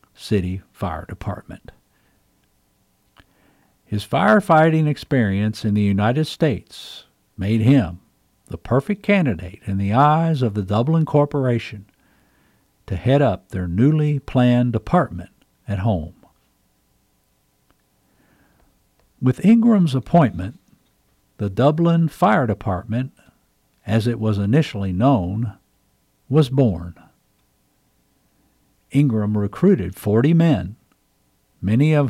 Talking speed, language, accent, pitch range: 95 wpm, English, American, 100-145 Hz